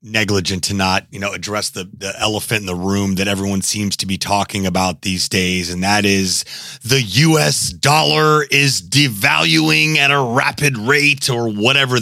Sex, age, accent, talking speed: male, 30-49, American, 175 wpm